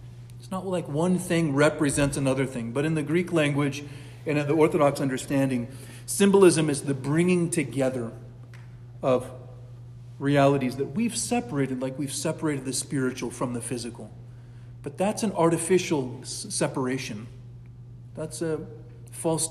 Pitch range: 120-145 Hz